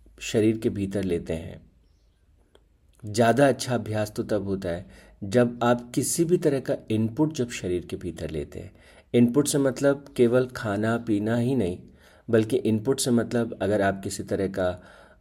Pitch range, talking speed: 90-125 Hz, 165 wpm